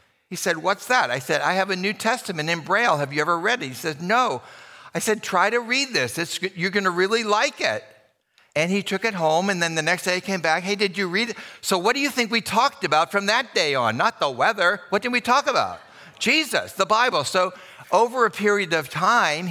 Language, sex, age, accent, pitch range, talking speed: English, male, 60-79, American, 135-195 Hz, 245 wpm